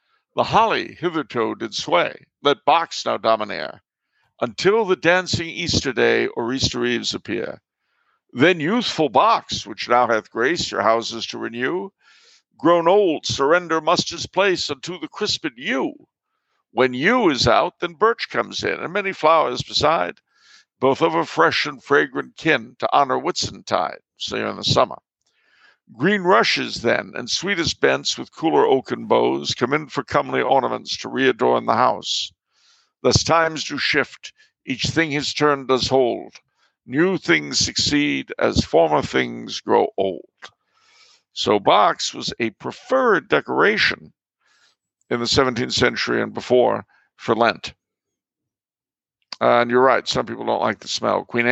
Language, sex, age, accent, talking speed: English, male, 60-79, American, 150 wpm